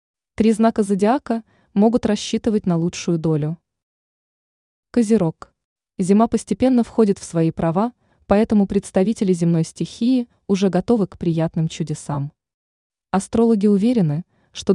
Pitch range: 165-215 Hz